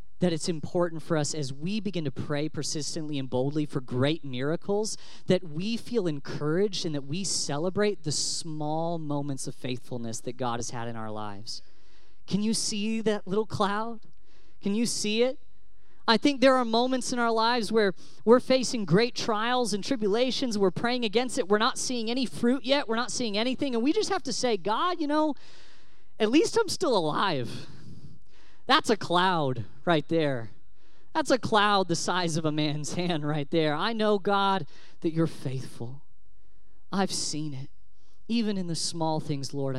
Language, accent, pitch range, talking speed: English, American, 130-210 Hz, 180 wpm